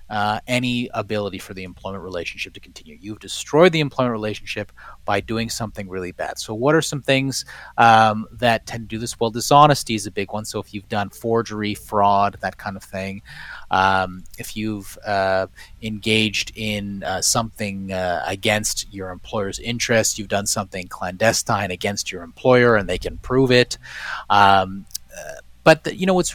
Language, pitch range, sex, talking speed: English, 100-130 Hz, male, 175 wpm